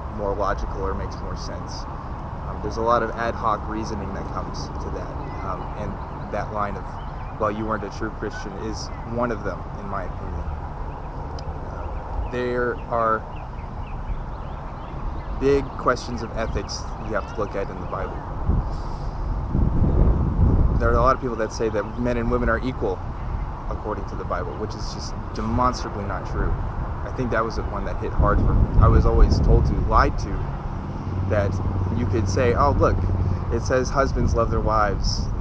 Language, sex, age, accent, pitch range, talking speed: English, male, 20-39, American, 90-115 Hz, 180 wpm